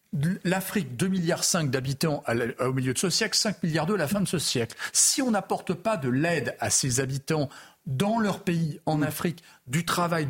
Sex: male